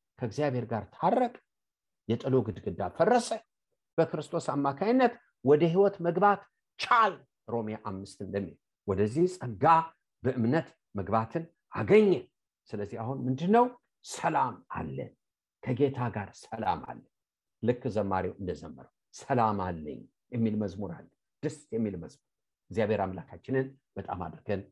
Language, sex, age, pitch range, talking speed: English, male, 50-69, 110-165 Hz, 105 wpm